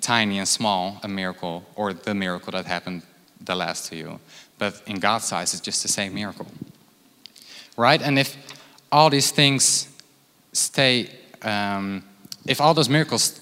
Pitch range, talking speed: 100-125 Hz, 155 wpm